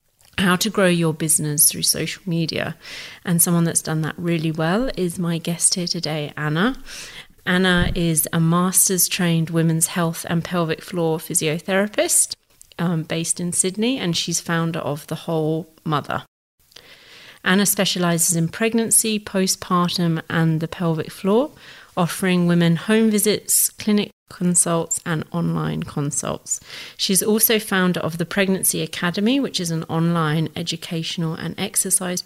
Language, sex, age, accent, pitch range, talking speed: English, female, 30-49, British, 165-190 Hz, 140 wpm